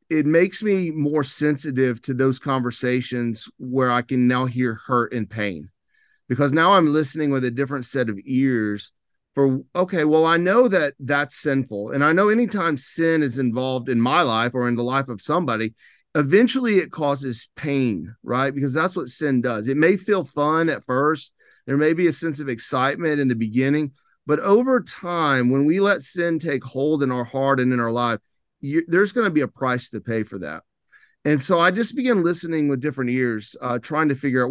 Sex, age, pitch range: male, 40-59, 125-155 Hz